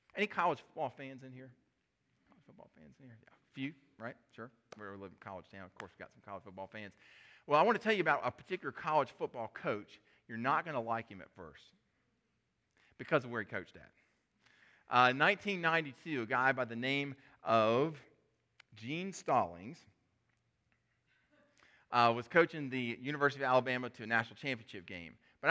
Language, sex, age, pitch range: English, male, 40-59, 115-155 Hz